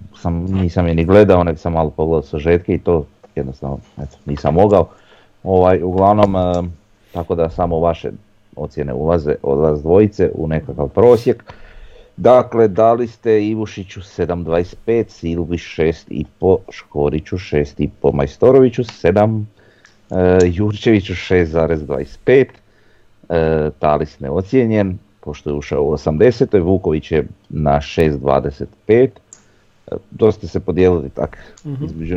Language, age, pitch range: Croatian, 30-49, 75-100 Hz